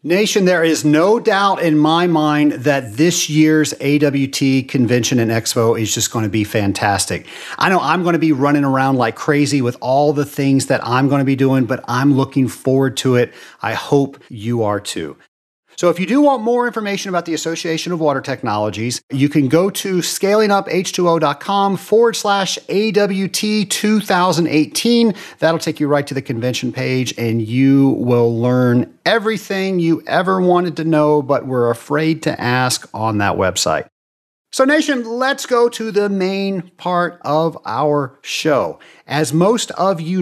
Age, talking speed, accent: 40-59, 170 wpm, American